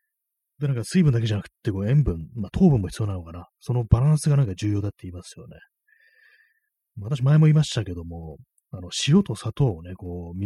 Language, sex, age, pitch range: Japanese, male, 30-49, 95-140 Hz